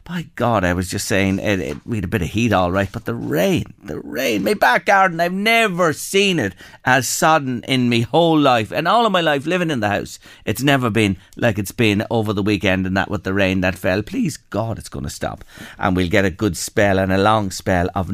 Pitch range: 105-155 Hz